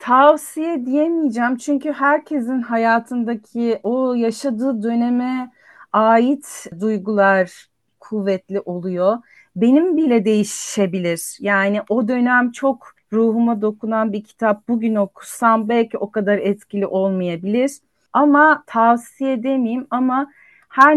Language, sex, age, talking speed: Turkish, female, 40-59, 100 wpm